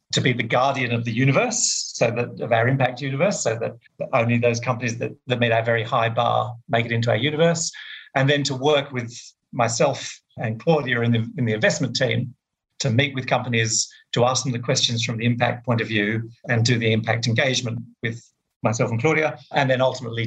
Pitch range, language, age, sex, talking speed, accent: 115-140 Hz, English, 40-59, male, 210 wpm, British